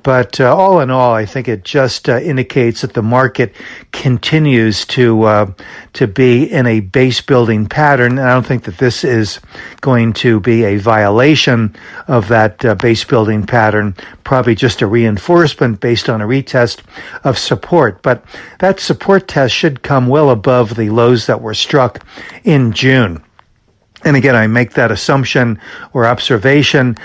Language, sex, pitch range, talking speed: English, male, 110-130 Hz, 165 wpm